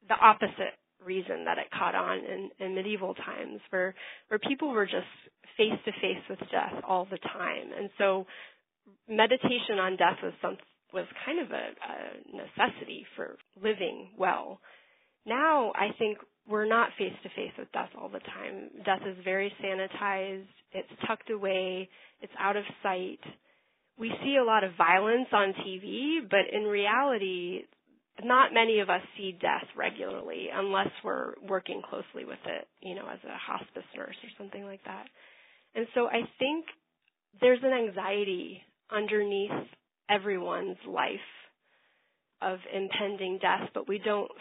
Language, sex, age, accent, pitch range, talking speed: English, female, 30-49, American, 195-230 Hz, 145 wpm